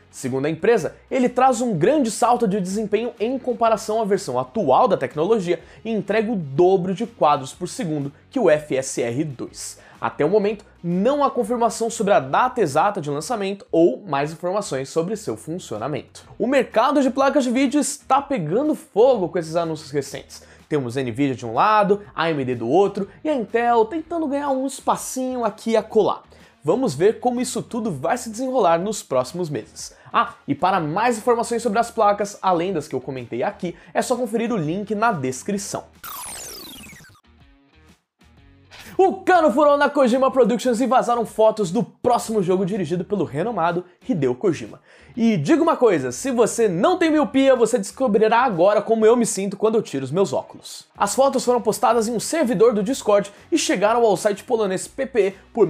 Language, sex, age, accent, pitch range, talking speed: Portuguese, male, 20-39, Brazilian, 170-250 Hz, 175 wpm